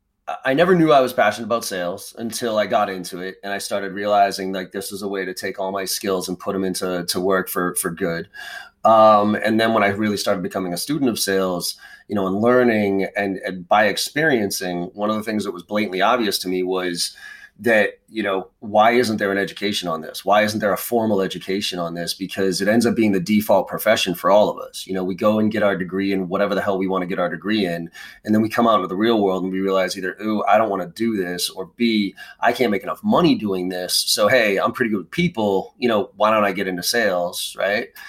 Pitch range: 95-120 Hz